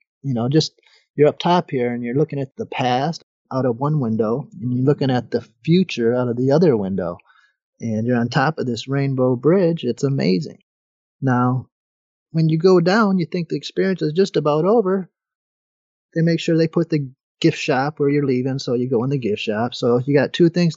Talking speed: 215 wpm